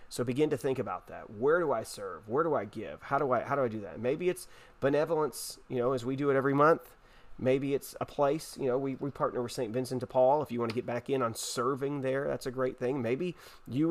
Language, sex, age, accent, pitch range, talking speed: English, male, 30-49, American, 125-150 Hz, 270 wpm